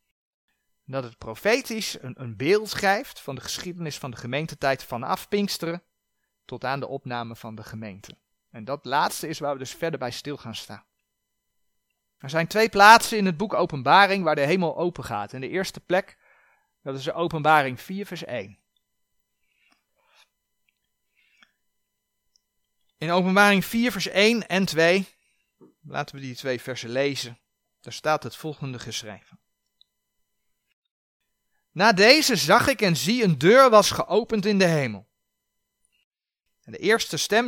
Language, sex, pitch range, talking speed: Dutch, male, 125-195 Hz, 150 wpm